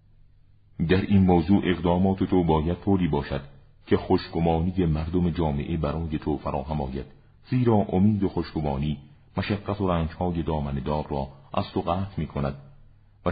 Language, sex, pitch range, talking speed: Persian, male, 75-95 Hz, 150 wpm